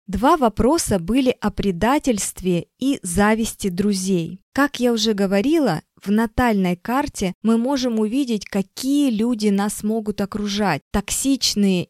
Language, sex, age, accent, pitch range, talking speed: Russian, female, 20-39, native, 190-235 Hz, 120 wpm